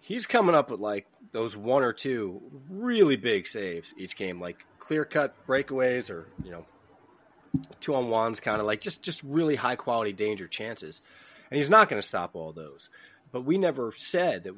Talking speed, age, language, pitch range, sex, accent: 175 wpm, 30-49, English, 100-130 Hz, male, American